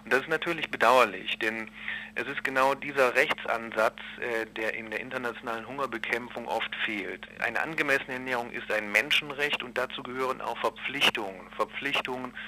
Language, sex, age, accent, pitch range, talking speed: German, male, 40-59, German, 110-125 Hz, 140 wpm